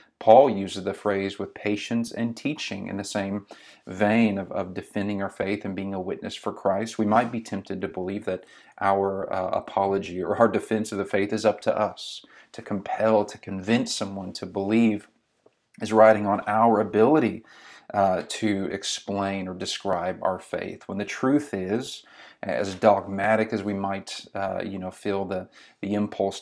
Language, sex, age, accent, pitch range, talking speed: English, male, 40-59, American, 100-110 Hz, 175 wpm